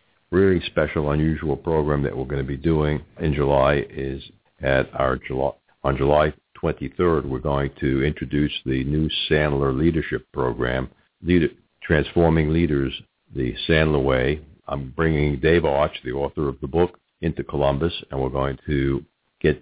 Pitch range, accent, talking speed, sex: 70-80 Hz, American, 155 wpm, male